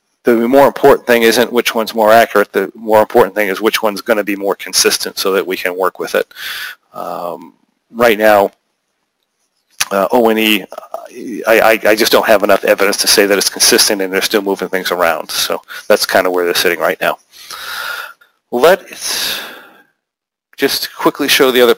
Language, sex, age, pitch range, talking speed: English, male, 40-59, 105-130 Hz, 180 wpm